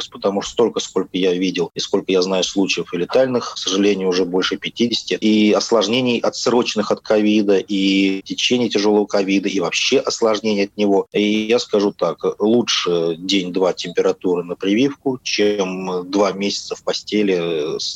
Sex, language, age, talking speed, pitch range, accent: male, Russian, 30-49, 155 wpm, 95-115 Hz, native